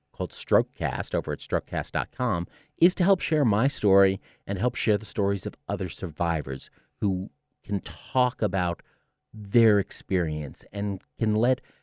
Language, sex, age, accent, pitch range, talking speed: English, male, 40-59, American, 85-110 Hz, 140 wpm